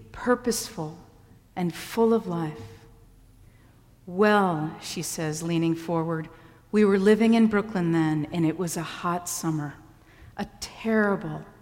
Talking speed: 125 wpm